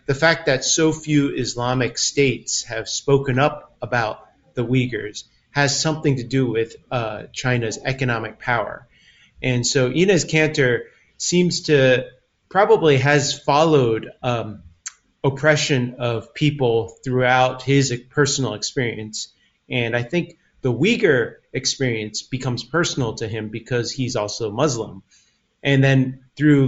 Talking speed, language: 125 wpm, English